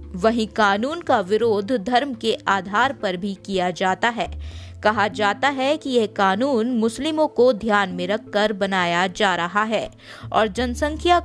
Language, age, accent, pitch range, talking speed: Hindi, 20-39, native, 195-245 Hz, 155 wpm